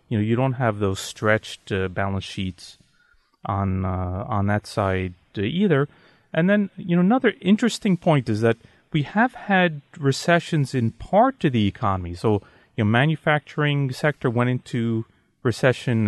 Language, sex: English, male